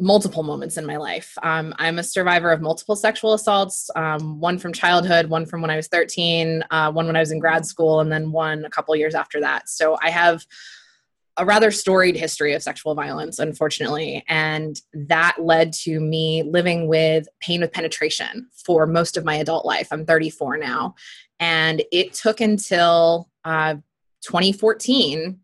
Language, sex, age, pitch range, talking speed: English, female, 20-39, 160-195 Hz, 180 wpm